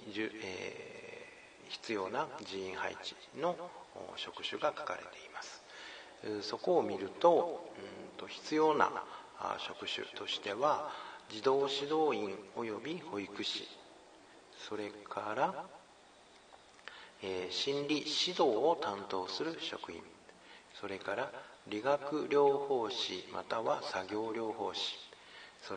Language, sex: Japanese, male